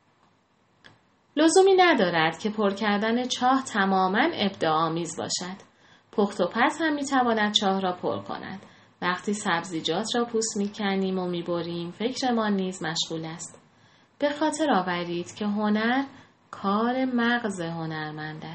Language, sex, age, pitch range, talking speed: Persian, female, 30-49, 170-225 Hz, 125 wpm